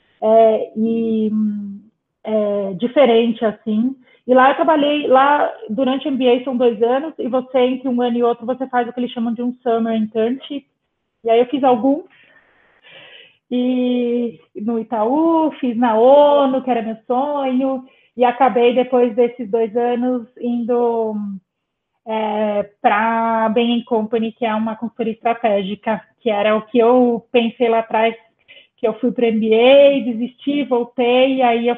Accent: Brazilian